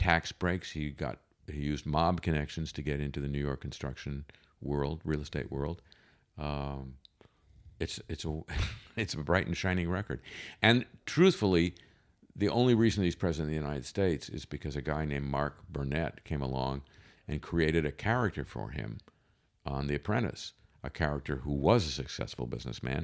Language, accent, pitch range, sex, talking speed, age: English, American, 70-90 Hz, male, 170 wpm, 50-69